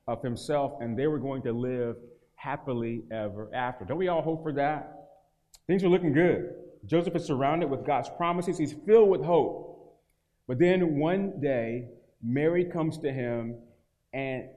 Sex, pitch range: male, 125-160 Hz